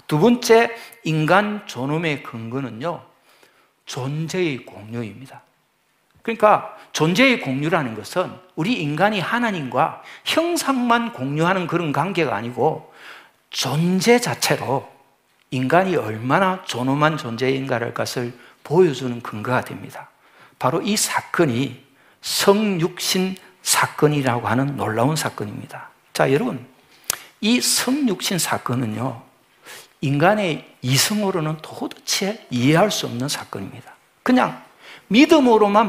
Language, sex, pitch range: Korean, male, 130-200 Hz